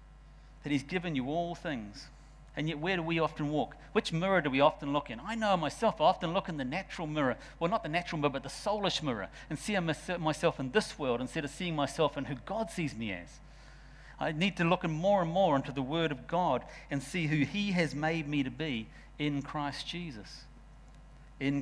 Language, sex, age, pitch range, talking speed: English, male, 50-69, 140-175 Hz, 220 wpm